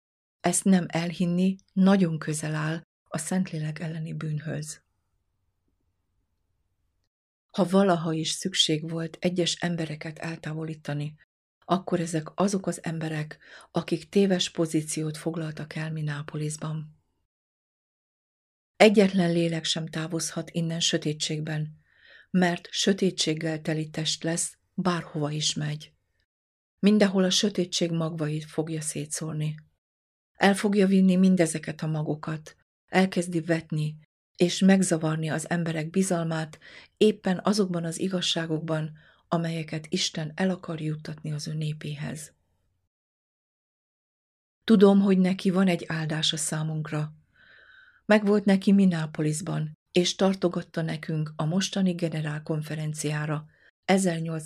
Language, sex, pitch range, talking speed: Hungarian, female, 155-180 Hz, 100 wpm